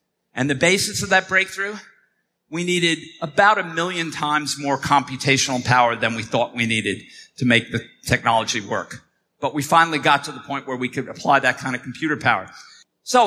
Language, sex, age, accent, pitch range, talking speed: English, male, 50-69, American, 150-200 Hz, 190 wpm